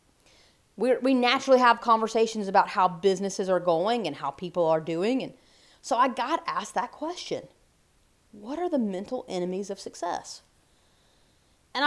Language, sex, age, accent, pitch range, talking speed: English, female, 30-49, American, 200-275 Hz, 150 wpm